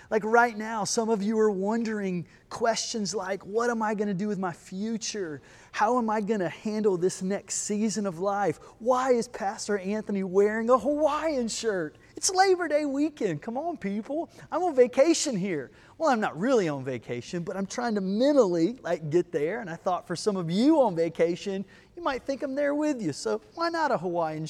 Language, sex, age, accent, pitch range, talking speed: English, male, 30-49, American, 165-220 Hz, 205 wpm